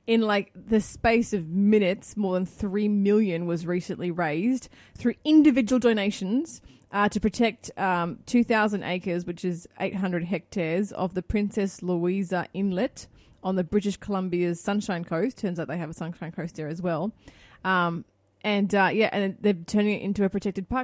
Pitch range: 180-230 Hz